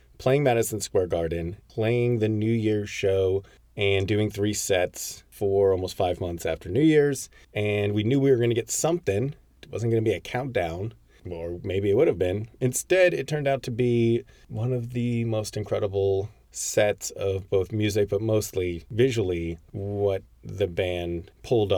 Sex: male